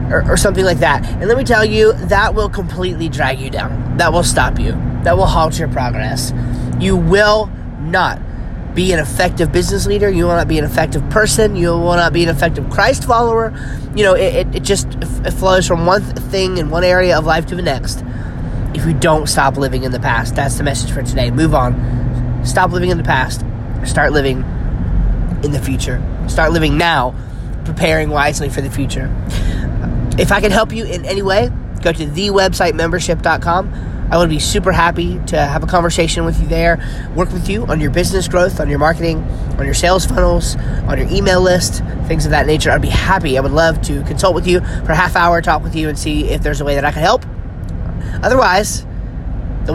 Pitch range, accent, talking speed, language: 125-175 Hz, American, 210 wpm, English